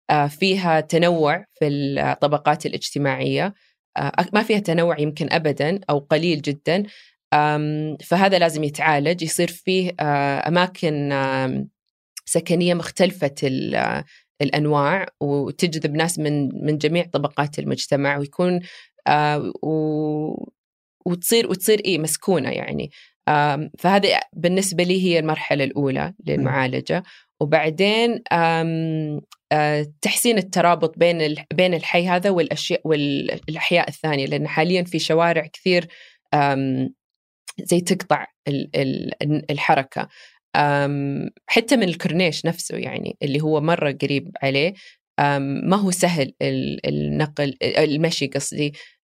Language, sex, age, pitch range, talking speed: Arabic, female, 20-39, 145-175 Hz, 95 wpm